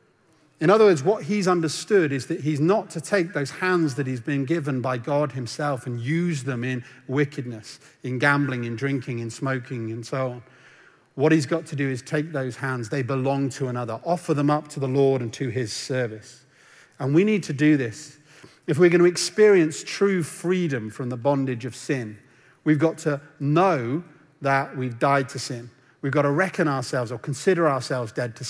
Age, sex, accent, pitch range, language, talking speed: 40-59, male, British, 130-155 Hz, English, 200 wpm